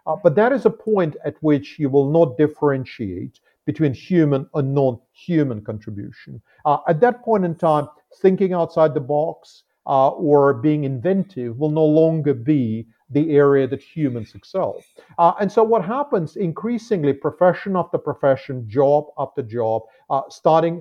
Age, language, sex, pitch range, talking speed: 50-69, English, male, 135-165 Hz, 155 wpm